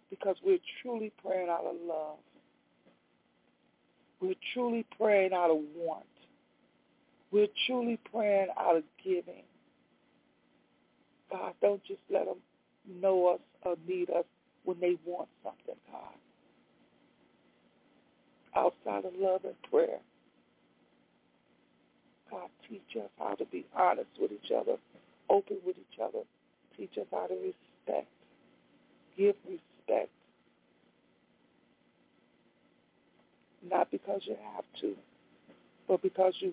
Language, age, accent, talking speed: English, 60-79, American, 110 wpm